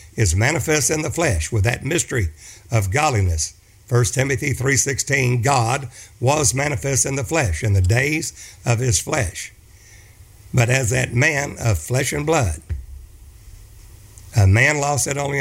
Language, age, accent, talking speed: English, 60-79, American, 150 wpm